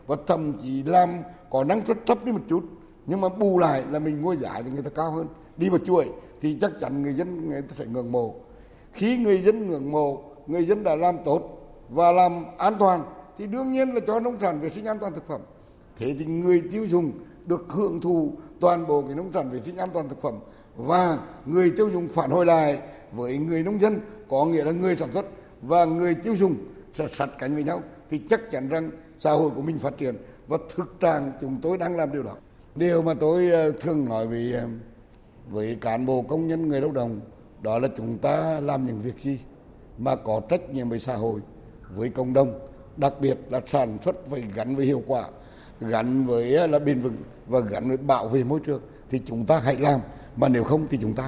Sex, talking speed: male, 225 wpm